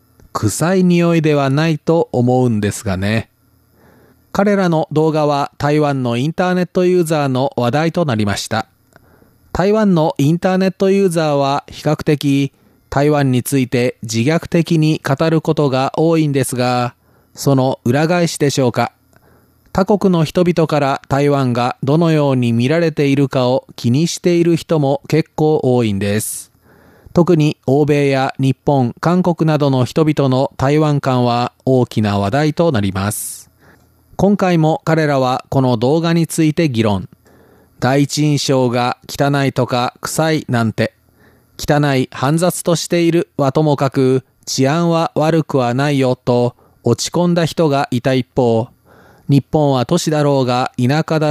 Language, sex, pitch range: Japanese, male, 125-160 Hz